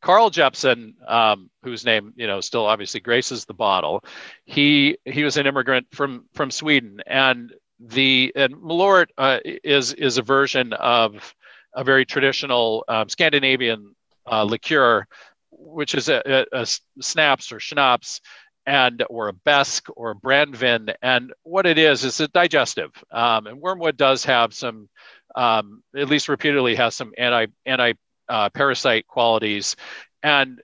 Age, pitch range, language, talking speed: 50-69, 120-145 Hz, English, 155 wpm